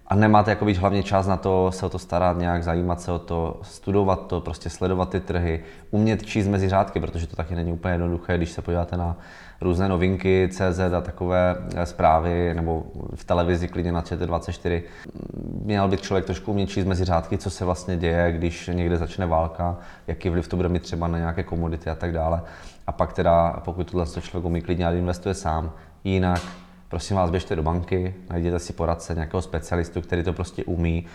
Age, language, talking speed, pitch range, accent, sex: 20-39, Czech, 200 wpm, 85-90 Hz, native, male